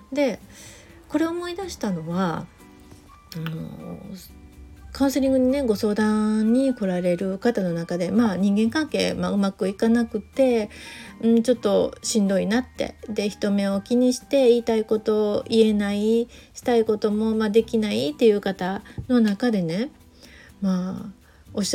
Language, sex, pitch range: Japanese, female, 190-240 Hz